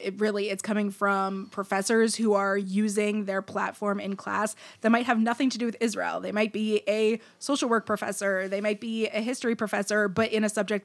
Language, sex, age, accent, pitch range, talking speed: English, female, 20-39, American, 195-230 Hz, 210 wpm